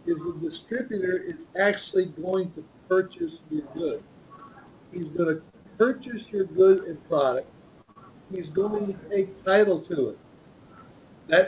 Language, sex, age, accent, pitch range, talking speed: English, male, 60-79, American, 180-215 Hz, 135 wpm